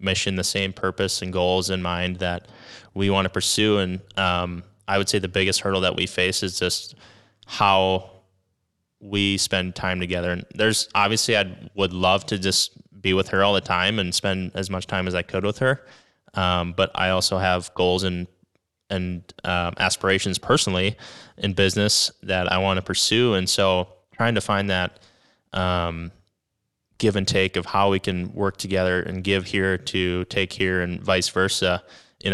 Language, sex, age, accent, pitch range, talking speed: English, male, 20-39, American, 90-100 Hz, 185 wpm